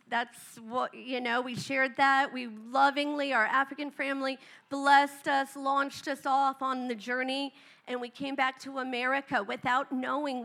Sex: female